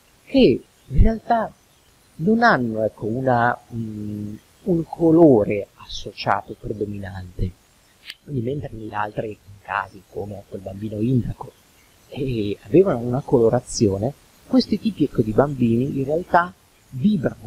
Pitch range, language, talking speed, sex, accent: 110-160 Hz, Italian, 115 wpm, male, native